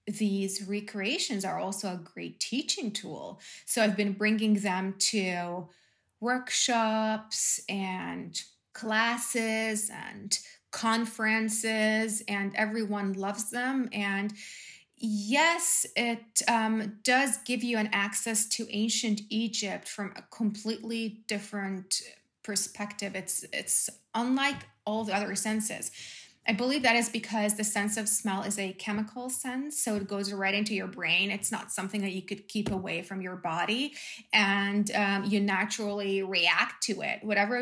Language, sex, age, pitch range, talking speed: English, female, 20-39, 195-225 Hz, 135 wpm